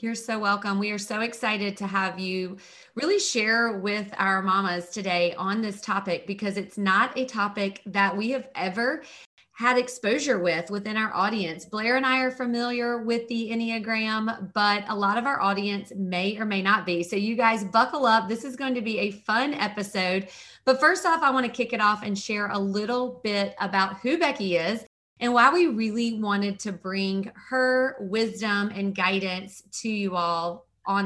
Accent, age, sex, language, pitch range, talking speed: American, 30-49, female, English, 195-235 Hz, 190 wpm